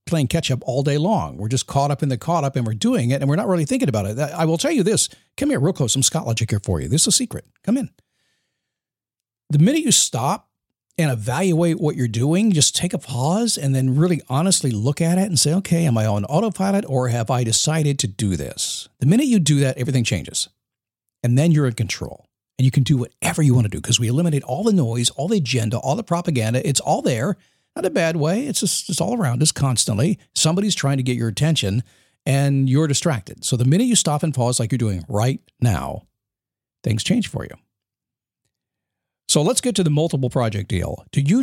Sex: male